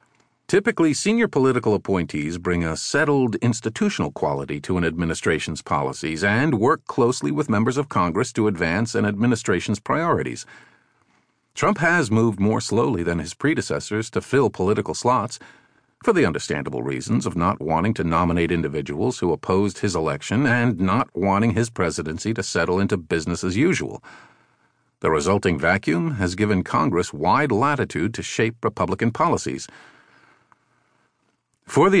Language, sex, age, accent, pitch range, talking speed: English, male, 50-69, American, 90-120 Hz, 145 wpm